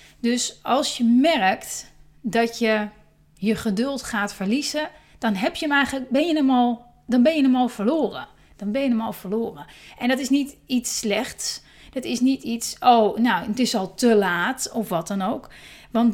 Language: Dutch